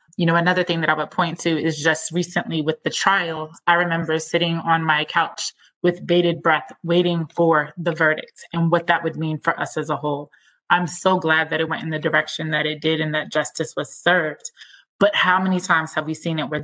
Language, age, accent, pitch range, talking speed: English, 20-39, American, 155-175 Hz, 230 wpm